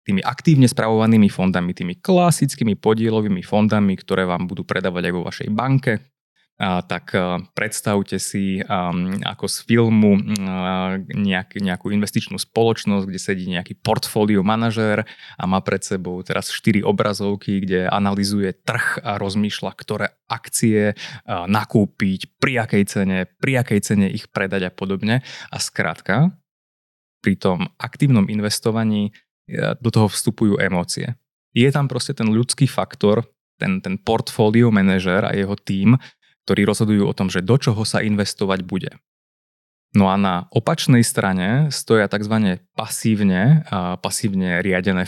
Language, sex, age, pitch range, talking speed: Slovak, male, 20-39, 95-115 Hz, 140 wpm